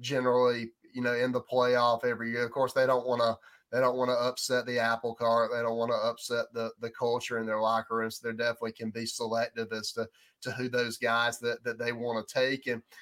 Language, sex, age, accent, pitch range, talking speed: English, male, 30-49, American, 120-130 Hz, 245 wpm